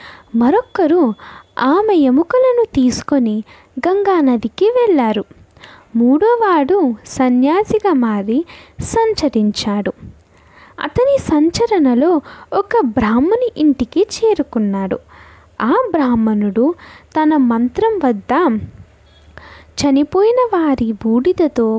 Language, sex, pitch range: Telugu, female, 235-380 Hz